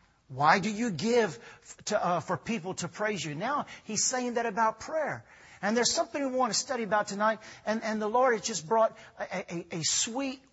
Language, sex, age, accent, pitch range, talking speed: English, male, 50-69, American, 150-215 Hz, 210 wpm